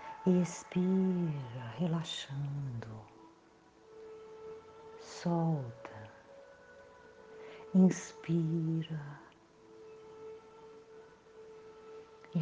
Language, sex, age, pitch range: Portuguese, female, 50-69, 140-225 Hz